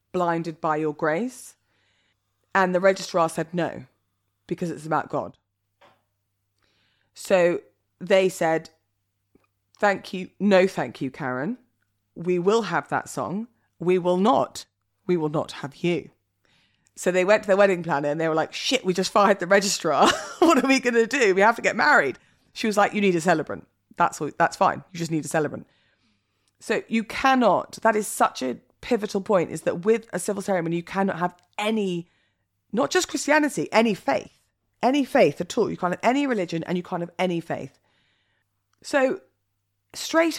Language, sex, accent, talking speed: English, female, British, 175 wpm